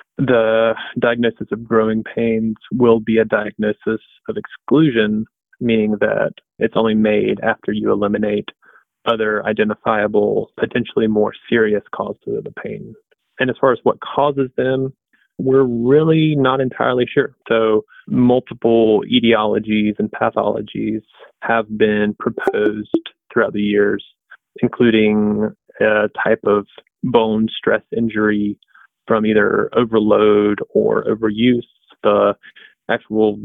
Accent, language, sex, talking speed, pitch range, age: American, English, male, 115 wpm, 105-120 Hz, 20-39